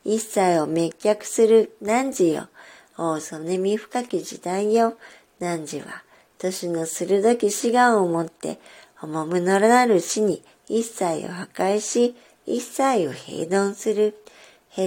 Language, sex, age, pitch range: Japanese, male, 50-69, 165-220 Hz